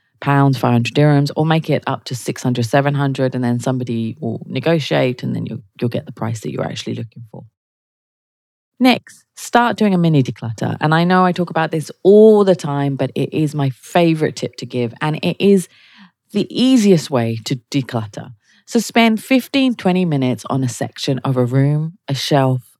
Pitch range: 125-175 Hz